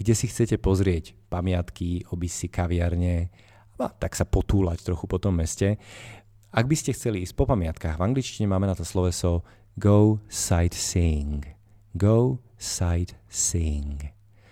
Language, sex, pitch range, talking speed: Slovak, male, 90-105 Hz, 130 wpm